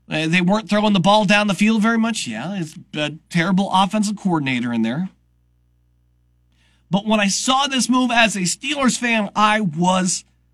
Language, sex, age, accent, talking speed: English, male, 40-59, American, 170 wpm